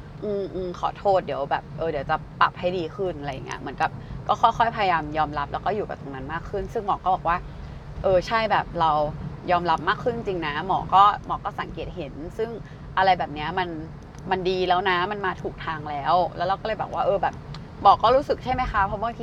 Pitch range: 150-200 Hz